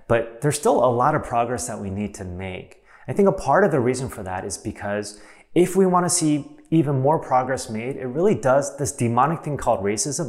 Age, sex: 30-49, male